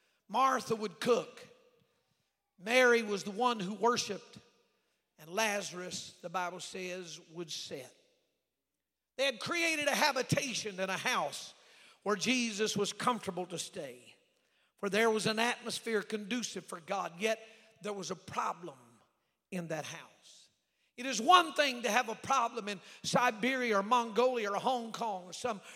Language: English